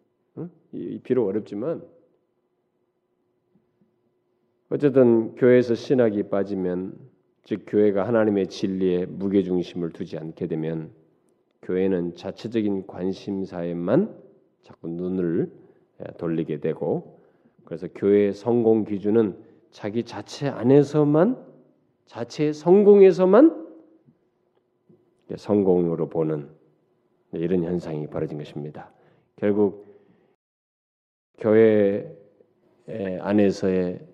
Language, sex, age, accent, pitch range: Korean, male, 40-59, native, 95-130 Hz